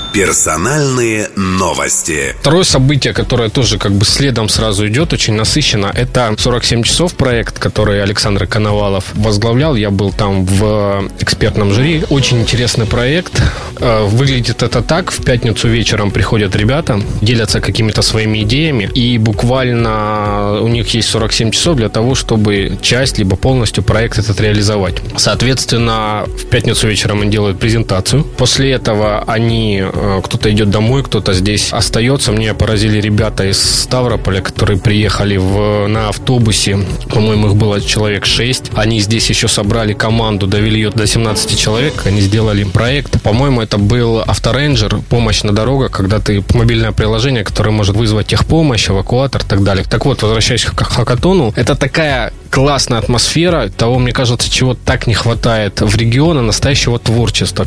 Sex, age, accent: male, 20-39, native